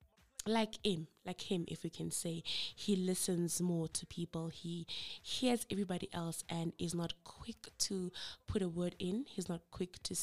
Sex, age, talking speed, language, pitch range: female, 20-39, 175 wpm, English, 170-200 Hz